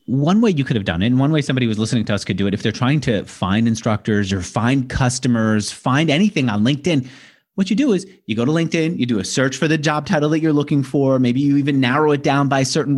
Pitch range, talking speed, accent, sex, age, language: 115-145 Hz, 280 wpm, American, male, 30-49, English